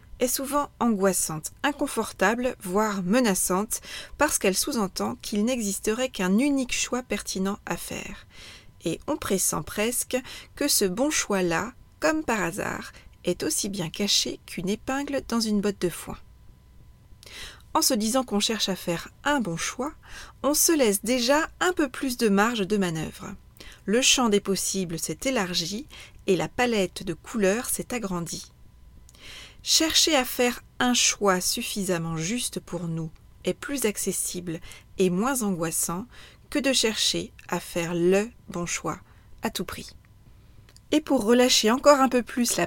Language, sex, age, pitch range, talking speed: French, female, 40-59, 185-255 Hz, 150 wpm